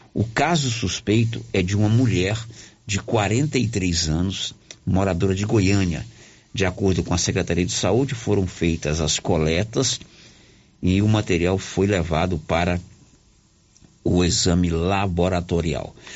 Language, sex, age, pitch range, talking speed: Portuguese, male, 60-79, 95-120 Hz, 125 wpm